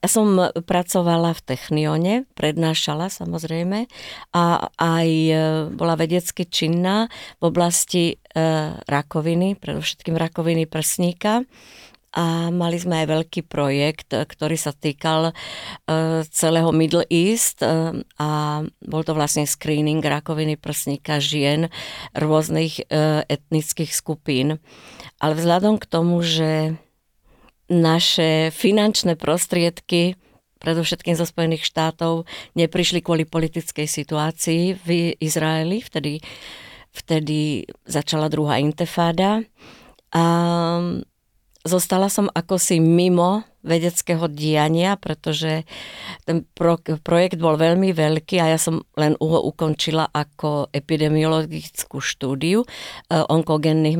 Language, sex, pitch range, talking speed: Slovak, female, 155-170 Hz, 95 wpm